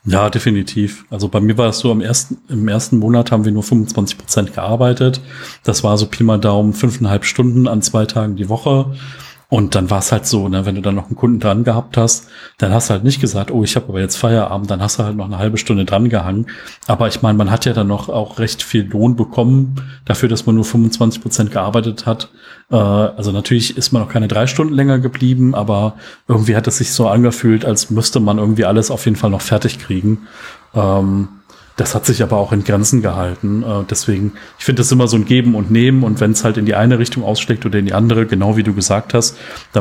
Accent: German